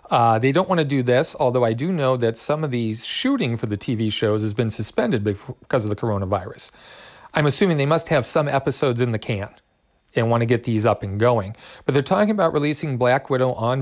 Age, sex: 40-59, male